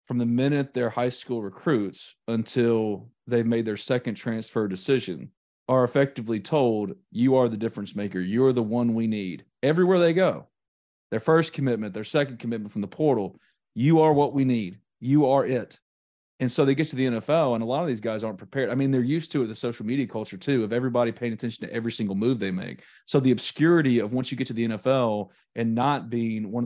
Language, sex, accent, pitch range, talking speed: English, male, American, 105-125 Hz, 220 wpm